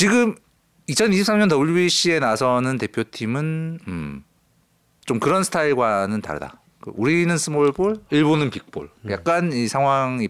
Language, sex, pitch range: Korean, male, 105-170 Hz